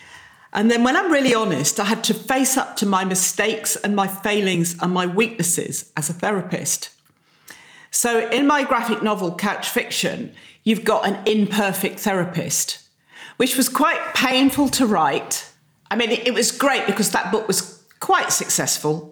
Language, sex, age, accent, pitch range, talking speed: English, female, 40-59, British, 170-215 Hz, 165 wpm